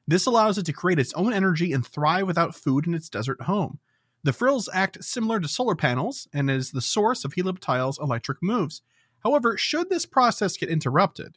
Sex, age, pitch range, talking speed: male, 30-49, 130-185 Hz, 195 wpm